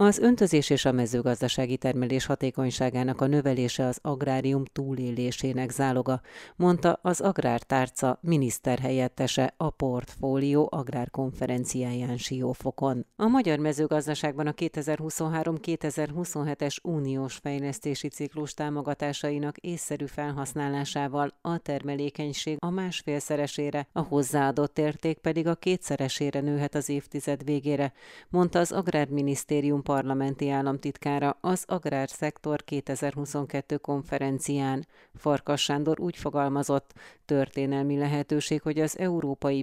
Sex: female